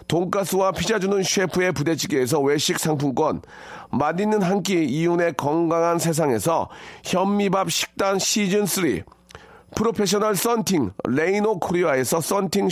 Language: Korean